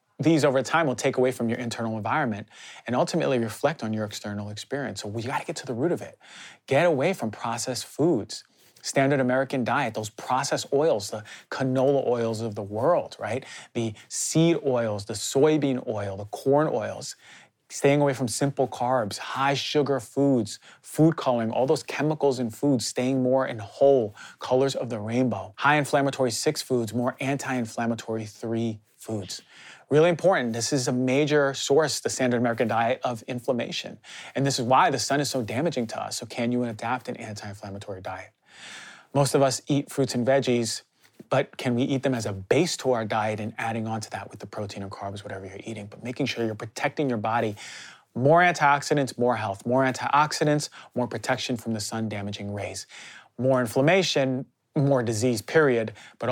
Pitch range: 110-135 Hz